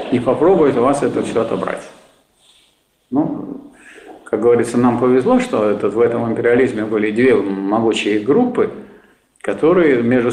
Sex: male